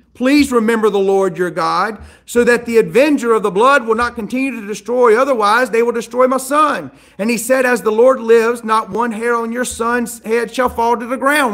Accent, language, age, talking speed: American, English, 40-59, 225 wpm